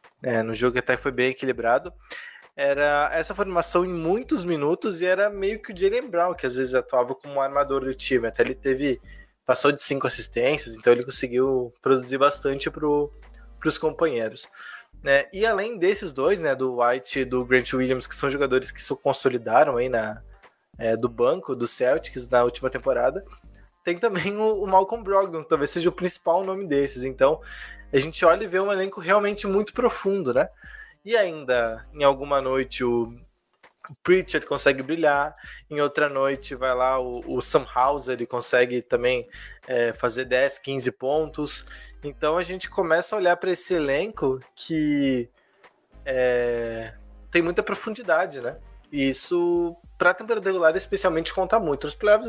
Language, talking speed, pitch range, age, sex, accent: Portuguese, 170 wpm, 130-185 Hz, 20-39, male, Brazilian